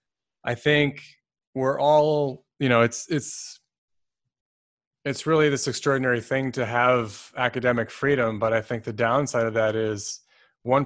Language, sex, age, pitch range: English, male, 20-39, 115-140 Hz